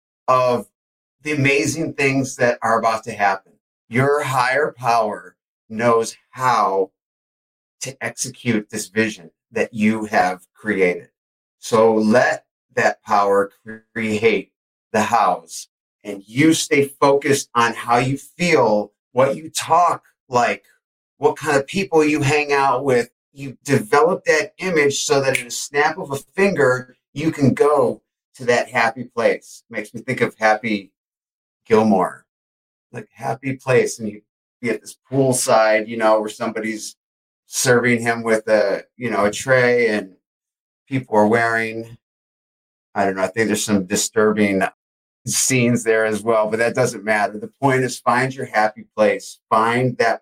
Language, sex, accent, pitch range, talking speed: English, male, American, 110-135 Hz, 150 wpm